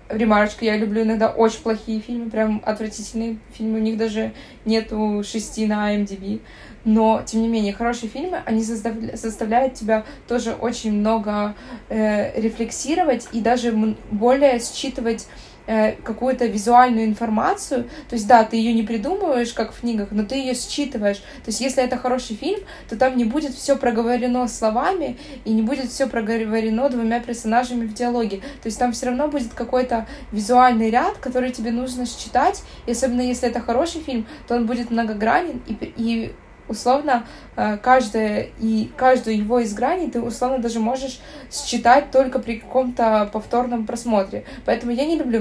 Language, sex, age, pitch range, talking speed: Ukrainian, female, 20-39, 220-255 Hz, 160 wpm